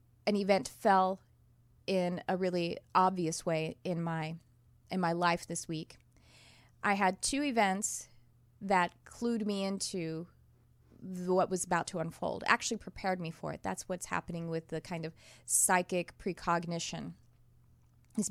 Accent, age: American, 30-49